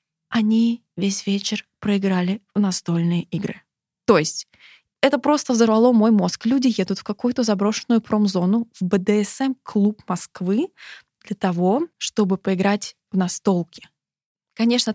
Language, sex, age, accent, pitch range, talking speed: Russian, female, 20-39, native, 185-220 Hz, 120 wpm